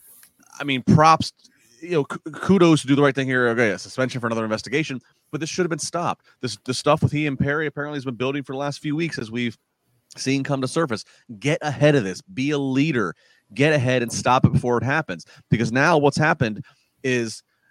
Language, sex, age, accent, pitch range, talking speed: English, male, 30-49, American, 130-165 Hz, 220 wpm